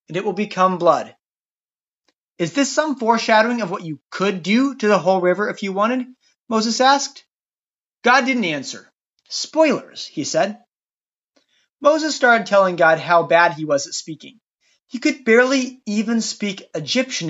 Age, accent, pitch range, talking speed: 30-49, American, 180-265 Hz, 155 wpm